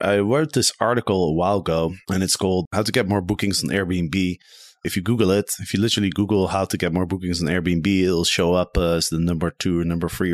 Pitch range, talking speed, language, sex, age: 90-115 Hz, 245 wpm, English, male, 20-39